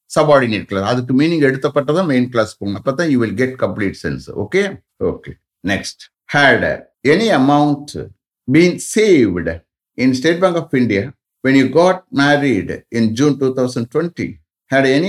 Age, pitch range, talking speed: 60-79, 110-150 Hz, 115 wpm